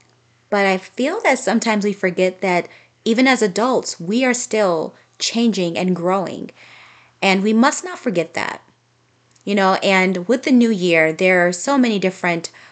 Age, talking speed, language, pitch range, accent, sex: 30-49, 165 wpm, English, 170-205 Hz, American, female